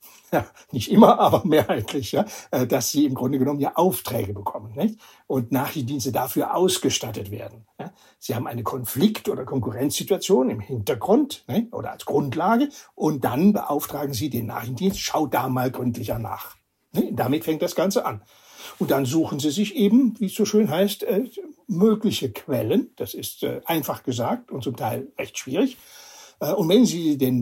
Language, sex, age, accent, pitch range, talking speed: German, male, 60-79, German, 130-200 Hz, 155 wpm